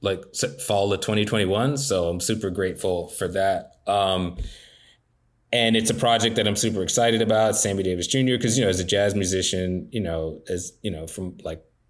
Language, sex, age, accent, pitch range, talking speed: English, male, 20-39, American, 95-110 Hz, 190 wpm